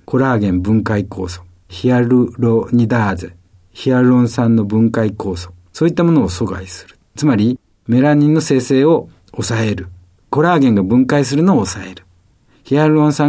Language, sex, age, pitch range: Japanese, male, 50-69, 95-145 Hz